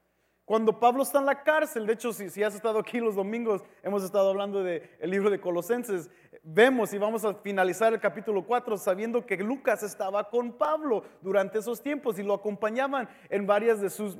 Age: 40-59